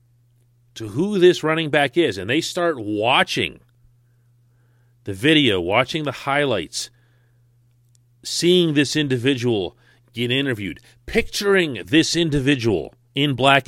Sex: male